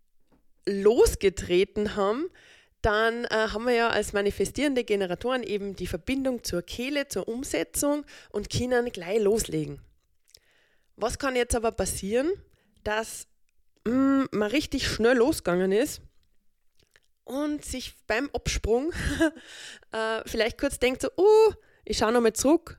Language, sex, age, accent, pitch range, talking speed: German, female, 20-39, German, 195-250 Hz, 125 wpm